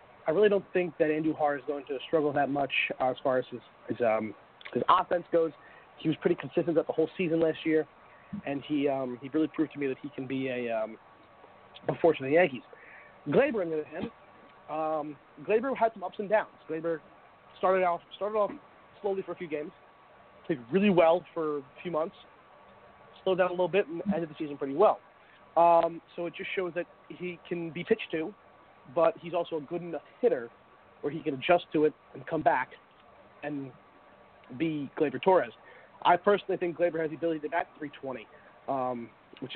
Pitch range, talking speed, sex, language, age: 145-180 Hz, 200 wpm, male, English, 30-49